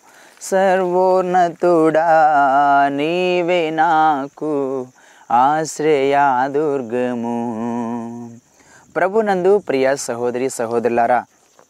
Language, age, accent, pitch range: Telugu, 20-39, native, 125-180 Hz